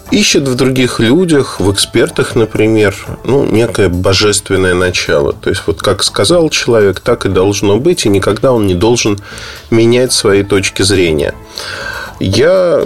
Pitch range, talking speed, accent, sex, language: 100-130 Hz, 145 wpm, native, male, Russian